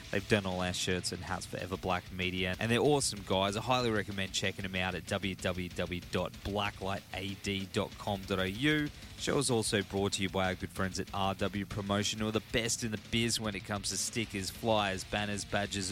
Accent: Australian